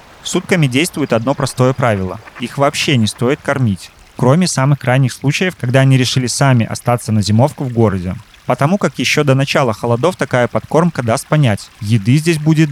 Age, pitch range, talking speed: 30-49, 115-140 Hz, 170 wpm